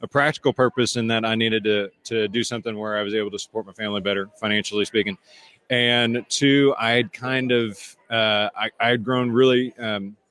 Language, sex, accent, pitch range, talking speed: English, male, American, 100-115 Hz, 205 wpm